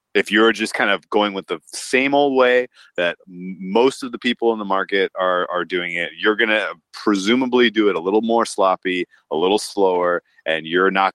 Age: 30-49